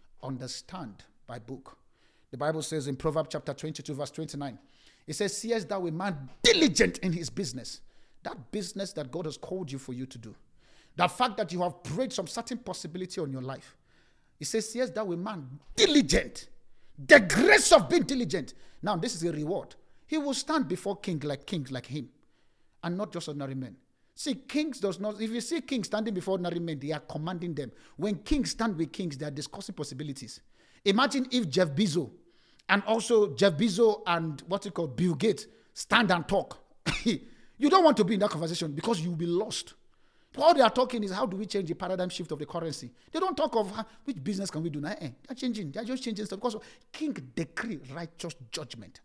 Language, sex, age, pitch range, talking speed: English, male, 50-69, 150-220 Hz, 210 wpm